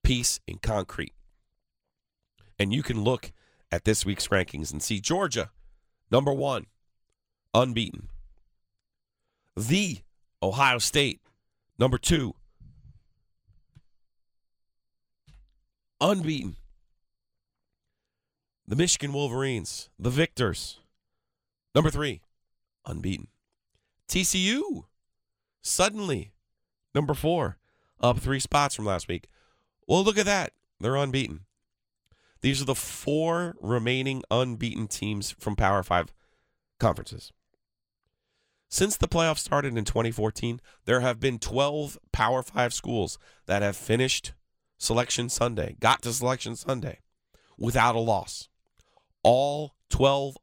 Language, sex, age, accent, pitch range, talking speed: English, male, 40-59, American, 100-135 Hz, 100 wpm